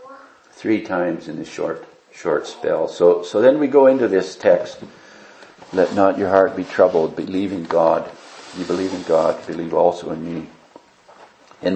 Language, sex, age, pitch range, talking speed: English, male, 50-69, 95-115 Hz, 170 wpm